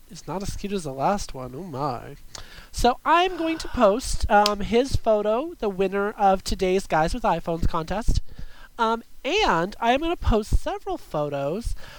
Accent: American